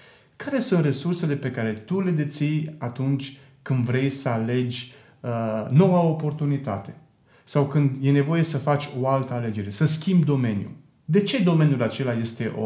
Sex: male